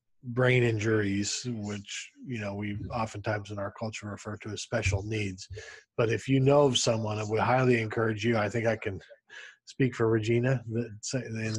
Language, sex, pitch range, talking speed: English, male, 105-120 Hz, 175 wpm